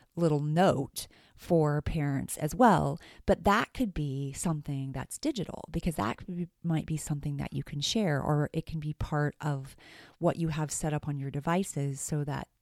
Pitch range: 145-175 Hz